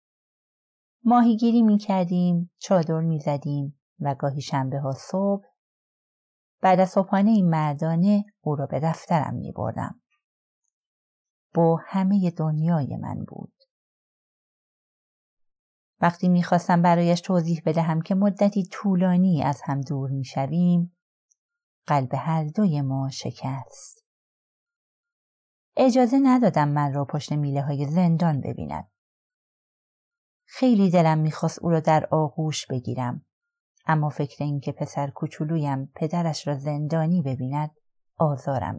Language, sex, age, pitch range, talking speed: Persian, female, 30-49, 145-190 Hz, 110 wpm